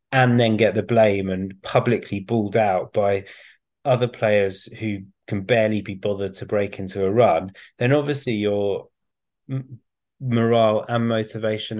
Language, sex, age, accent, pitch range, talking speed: English, male, 30-49, British, 100-120 Hz, 140 wpm